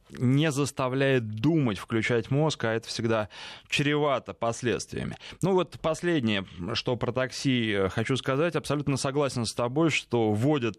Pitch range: 110-140 Hz